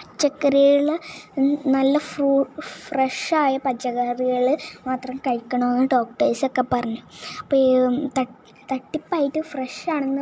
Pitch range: 250-295 Hz